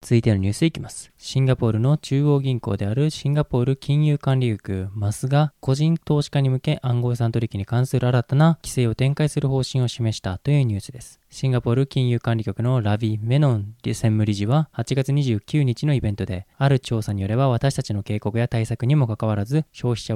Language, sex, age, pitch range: Japanese, male, 20-39, 110-145 Hz